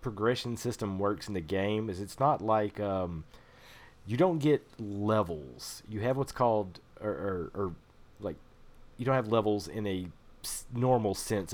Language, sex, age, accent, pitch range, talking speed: English, male, 30-49, American, 90-115 Hz, 160 wpm